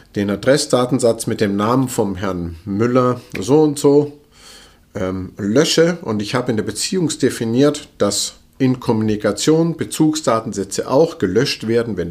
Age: 50-69